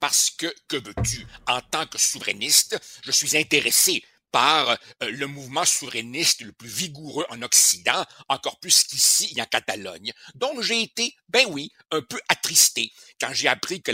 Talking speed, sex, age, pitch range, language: 165 wpm, male, 60-79, 135-215 Hz, French